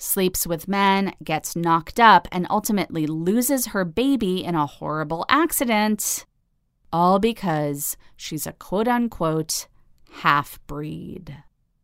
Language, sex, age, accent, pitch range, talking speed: English, female, 30-49, American, 155-205 Hz, 115 wpm